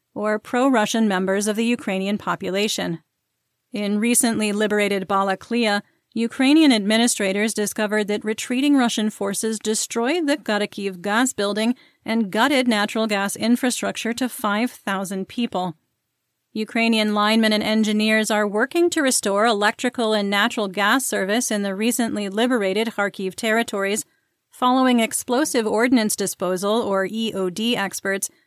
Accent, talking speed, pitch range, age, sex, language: American, 120 wpm, 200-235 Hz, 30-49, female, English